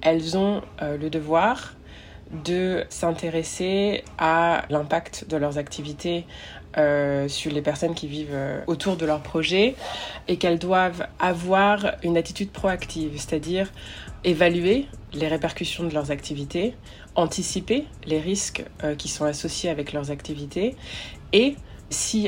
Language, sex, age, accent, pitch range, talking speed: French, female, 20-39, French, 145-175 Hz, 130 wpm